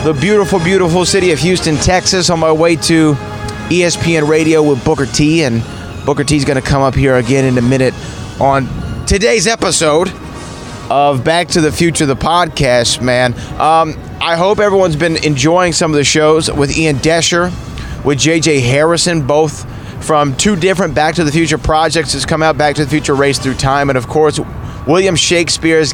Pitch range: 125-160 Hz